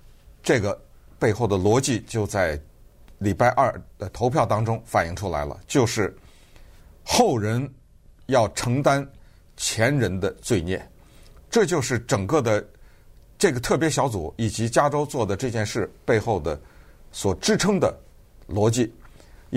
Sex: male